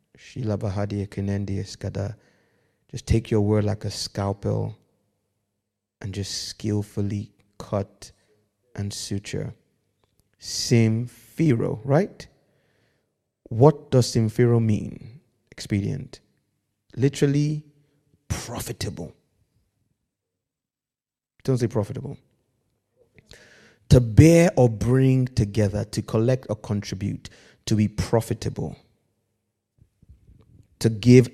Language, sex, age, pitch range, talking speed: English, male, 30-49, 105-130 Hz, 75 wpm